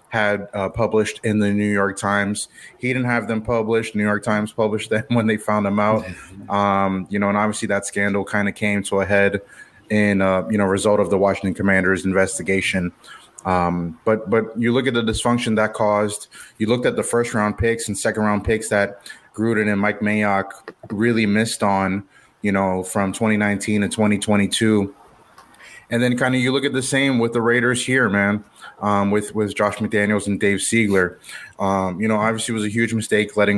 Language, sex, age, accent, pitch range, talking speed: English, male, 20-39, American, 100-110 Hz, 200 wpm